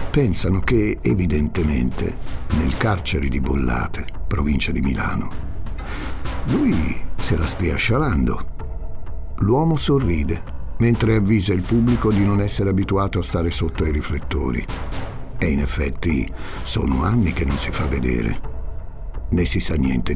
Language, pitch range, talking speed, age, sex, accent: Italian, 70-100 Hz, 130 wpm, 60-79, male, native